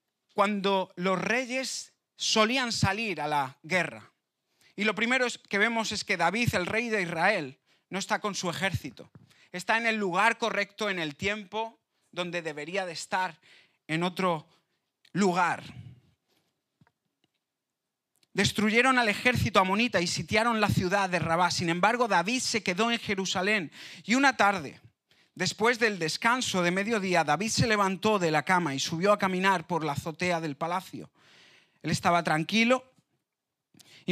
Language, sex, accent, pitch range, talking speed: Spanish, male, Spanish, 165-215 Hz, 150 wpm